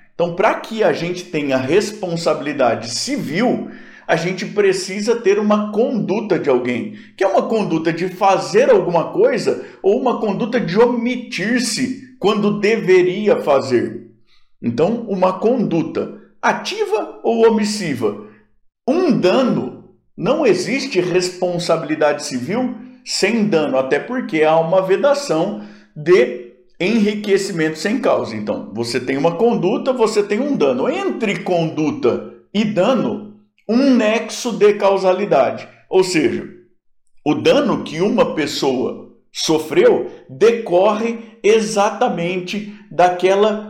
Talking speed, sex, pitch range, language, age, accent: 115 wpm, male, 170-225 Hz, Portuguese, 50-69, Brazilian